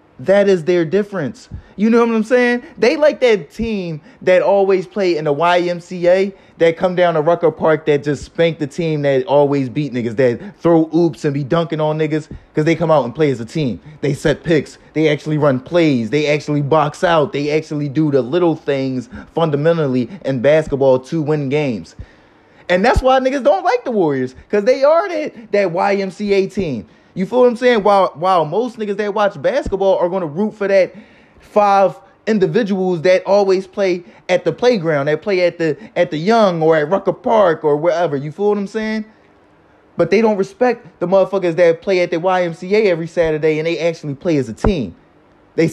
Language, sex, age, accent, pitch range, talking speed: English, male, 20-39, American, 155-200 Hz, 200 wpm